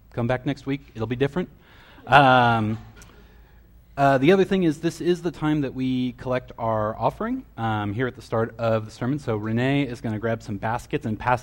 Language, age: English, 30-49